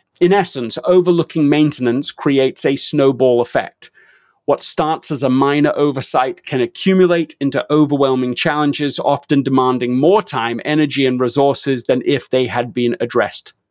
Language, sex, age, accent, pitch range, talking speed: English, male, 40-59, British, 135-170 Hz, 140 wpm